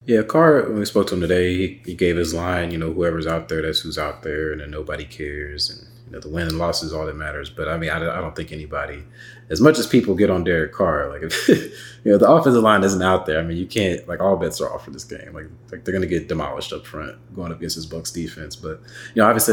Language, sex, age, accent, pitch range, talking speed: English, male, 30-49, American, 80-95 Hz, 290 wpm